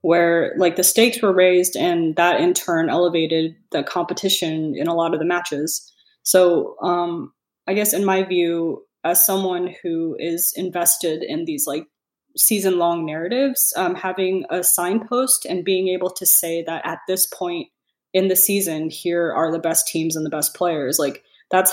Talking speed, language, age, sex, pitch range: 175 wpm, English, 20-39, female, 160-190 Hz